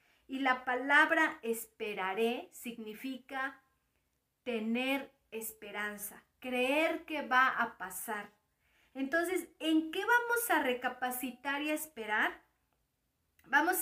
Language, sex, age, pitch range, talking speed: Spanish, female, 40-59, 235-300 Hz, 95 wpm